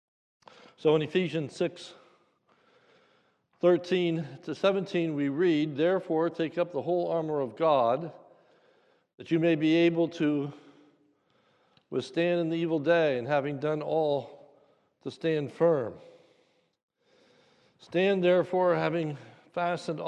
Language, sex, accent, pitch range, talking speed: English, male, American, 145-175 Hz, 115 wpm